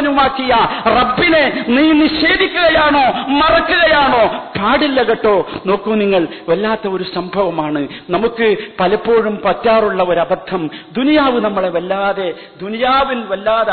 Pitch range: 205-305 Hz